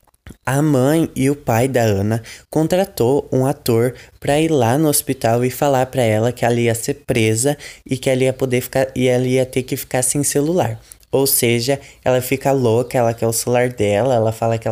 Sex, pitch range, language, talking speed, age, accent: male, 120-135 Hz, Portuguese, 210 wpm, 20-39, Brazilian